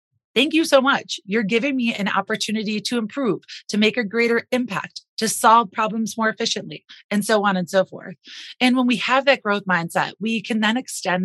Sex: female